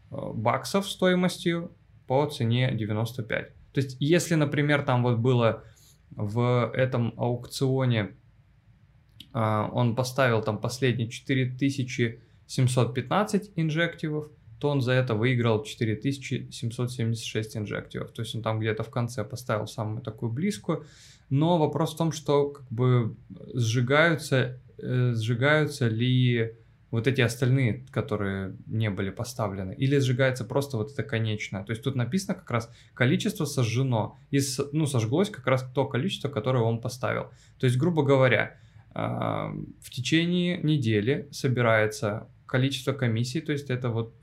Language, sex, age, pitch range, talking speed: Russian, male, 20-39, 115-140 Hz, 125 wpm